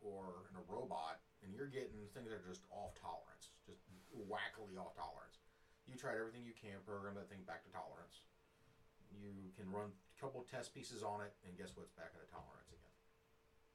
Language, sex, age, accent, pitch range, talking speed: English, male, 40-59, American, 95-120 Hz, 200 wpm